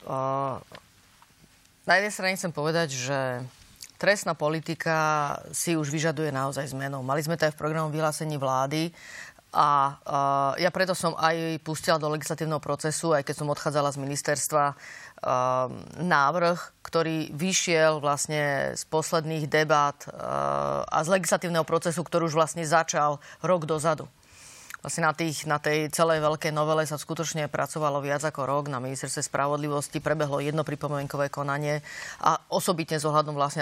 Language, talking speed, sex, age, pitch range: Slovak, 145 wpm, female, 30-49, 145-160 Hz